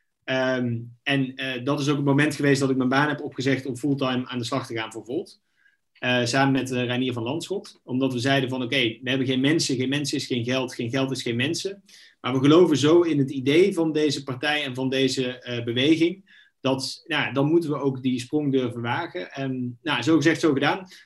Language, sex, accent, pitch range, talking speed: Dutch, male, Dutch, 125-150 Hz, 220 wpm